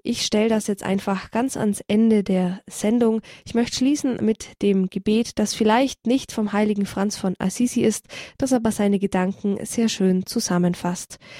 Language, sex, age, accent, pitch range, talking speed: German, female, 20-39, German, 195-240 Hz, 170 wpm